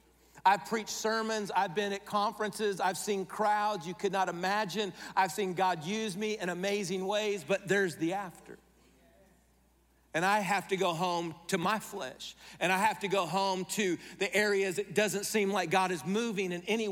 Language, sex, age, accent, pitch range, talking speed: English, male, 50-69, American, 190-220 Hz, 190 wpm